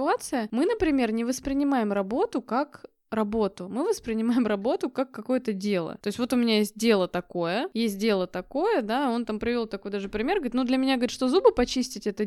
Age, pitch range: 20-39, 205-260 Hz